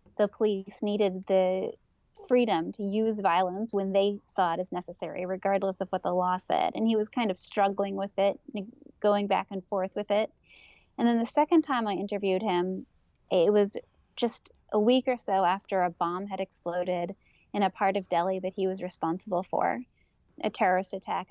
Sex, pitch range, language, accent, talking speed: female, 185-210 Hz, English, American, 190 wpm